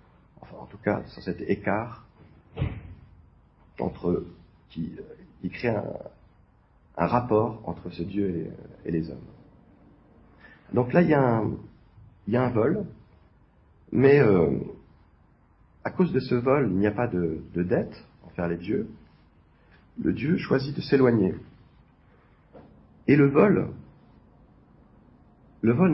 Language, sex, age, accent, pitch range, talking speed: French, male, 40-59, French, 95-140 Hz, 135 wpm